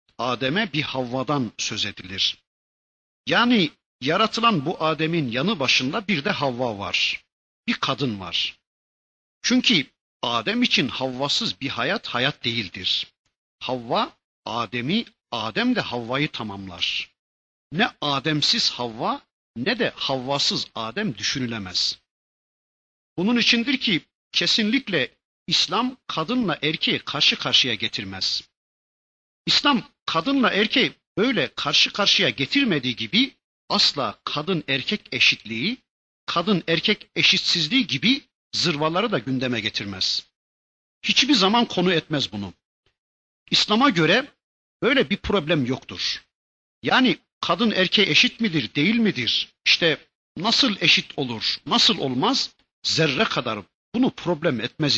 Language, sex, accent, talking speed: Turkish, male, native, 110 wpm